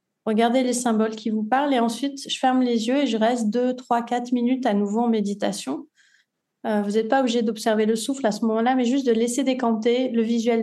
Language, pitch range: French, 220-255 Hz